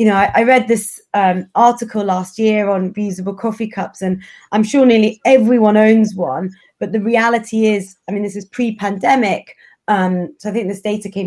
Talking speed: 195 wpm